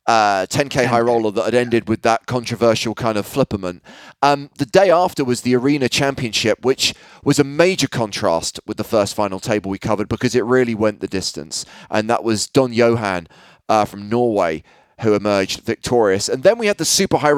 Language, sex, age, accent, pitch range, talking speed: English, male, 30-49, British, 110-145 Hz, 195 wpm